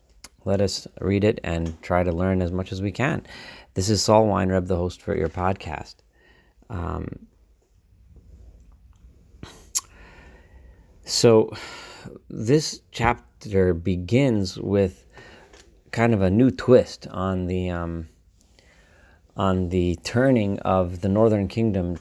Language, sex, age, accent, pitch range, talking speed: English, male, 40-59, American, 90-110 Hz, 115 wpm